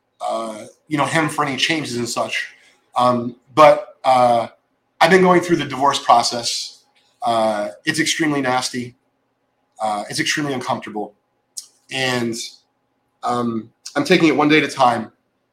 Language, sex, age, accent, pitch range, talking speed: English, male, 30-49, American, 120-145 Hz, 145 wpm